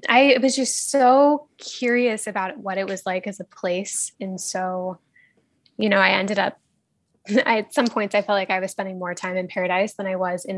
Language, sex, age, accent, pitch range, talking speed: English, female, 10-29, American, 185-215 Hz, 210 wpm